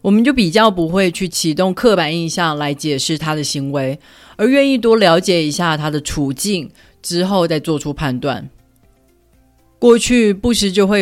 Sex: female